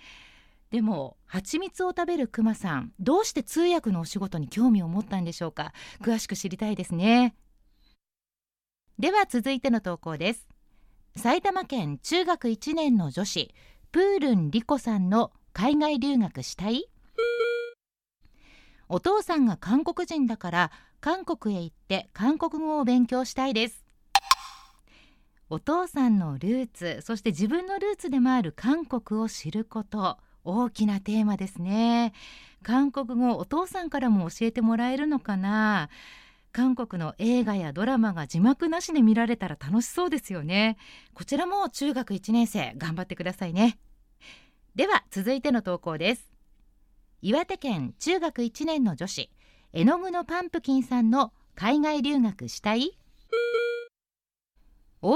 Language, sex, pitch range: Japanese, female, 195-300 Hz